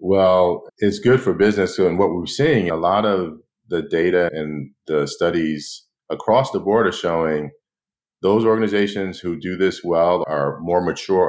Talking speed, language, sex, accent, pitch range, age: 170 wpm, English, male, American, 85-105 Hz, 40-59